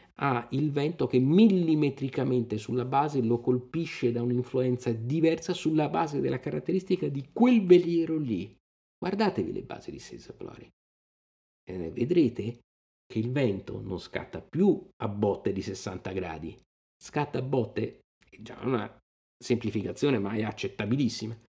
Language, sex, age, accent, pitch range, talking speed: Italian, male, 50-69, native, 100-135 Hz, 140 wpm